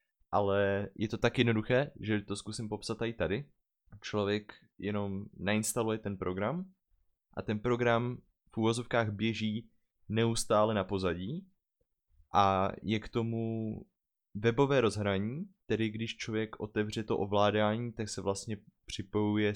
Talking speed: 125 wpm